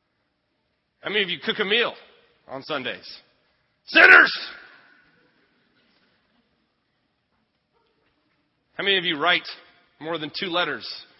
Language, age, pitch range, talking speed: English, 30-49, 135-170 Hz, 100 wpm